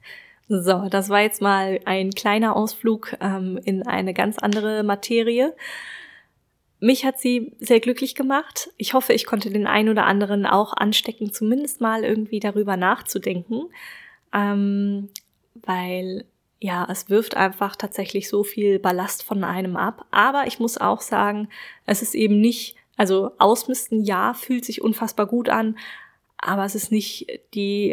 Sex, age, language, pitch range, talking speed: female, 20-39, German, 195-225 Hz, 150 wpm